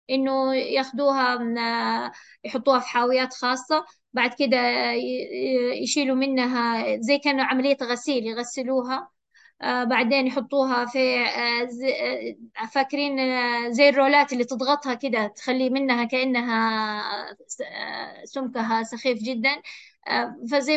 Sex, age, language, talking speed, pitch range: female, 20-39, Arabic, 90 wpm, 250-280 Hz